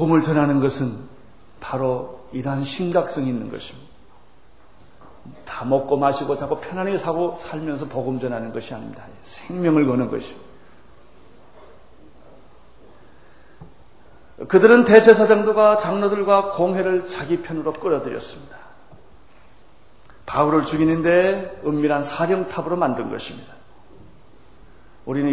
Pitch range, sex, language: 135-180 Hz, male, Korean